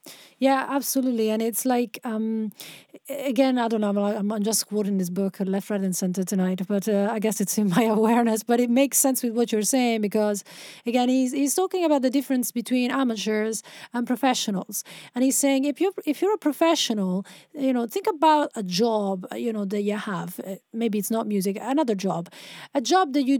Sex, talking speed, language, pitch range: female, 200 wpm, English, 210-275 Hz